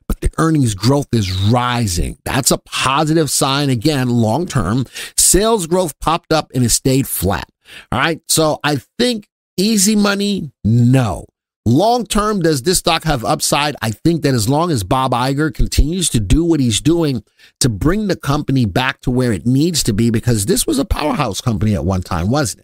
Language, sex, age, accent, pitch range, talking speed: English, male, 50-69, American, 115-160 Hz, 185 wpm